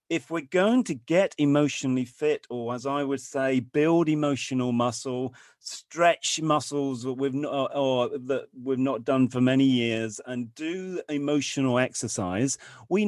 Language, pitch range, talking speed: English, 135-190 Hz, 145 wpm